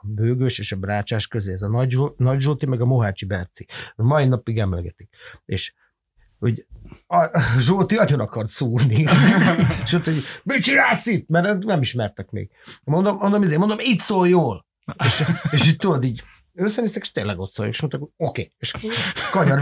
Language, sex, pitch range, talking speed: Hungarian, male, 110-150 Hz, 165 wpm